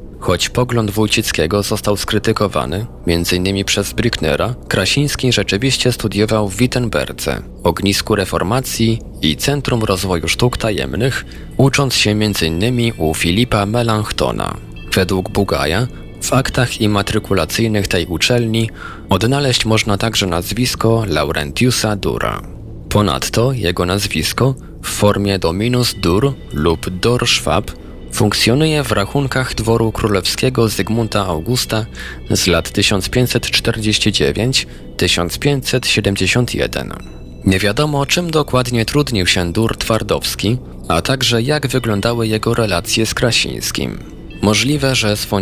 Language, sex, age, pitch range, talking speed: Polish, male, 20-39, 90-120 Hz, 100 wpm